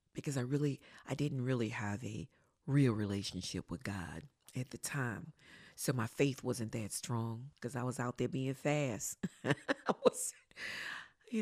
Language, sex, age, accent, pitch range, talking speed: English, female, 40-59, American, 120-145 Hz, 165 wpm